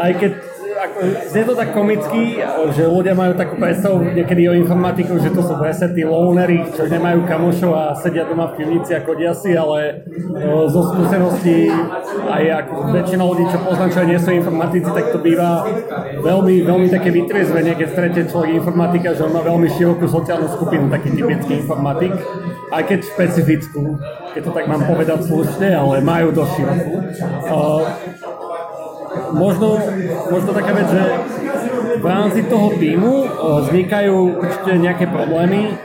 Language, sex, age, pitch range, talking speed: Slovak, male, 30-49, 165-195 Hz, 160 wpm